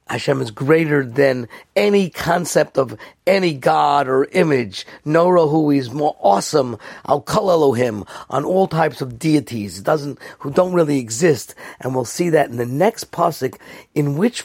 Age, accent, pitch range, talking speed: 50-69, American, 120-165 Hz, 160 wpm